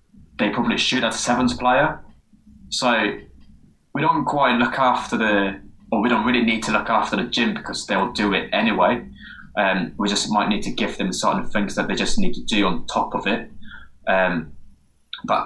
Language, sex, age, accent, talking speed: English, male, 20-39, British, 200 wpm